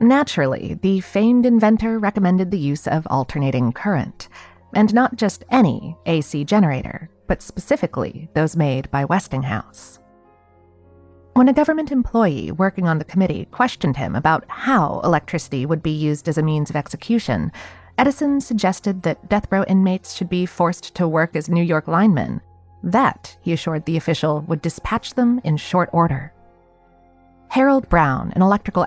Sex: female